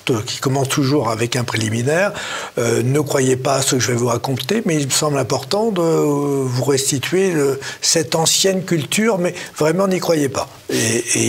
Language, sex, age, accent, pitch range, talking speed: French, male, 50-69, French, 115-145 Hz, 190 wpm